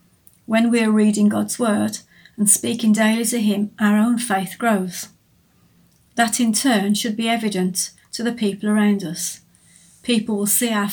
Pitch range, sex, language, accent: 195-225 Hz, female, English, British